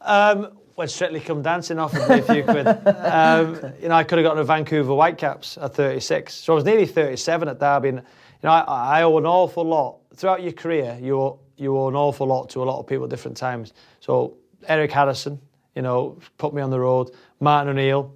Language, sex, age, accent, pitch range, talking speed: English, male, 30-49, British, 130-155 Hz, 220 wpm